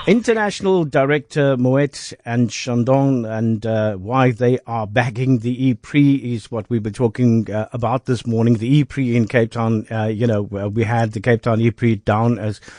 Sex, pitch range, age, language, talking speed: male, 115-145 Hz, 50-69, English, 195 wpm